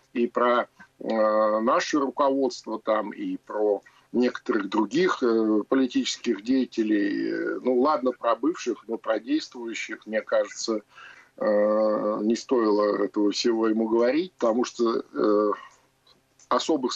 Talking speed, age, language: 120 wpm, 50-69, Russian